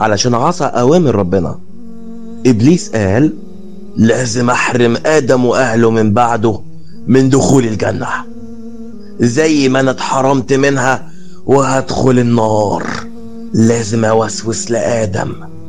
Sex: male